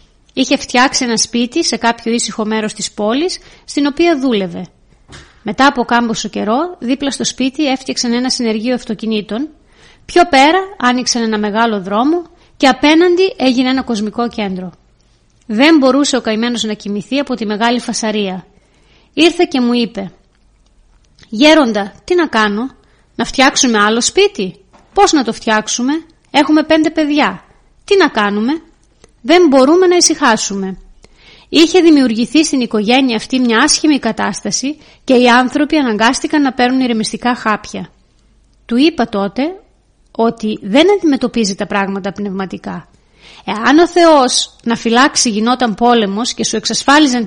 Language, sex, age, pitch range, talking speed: Greek, female, 30-49, 220-300 Hz, 135 wpm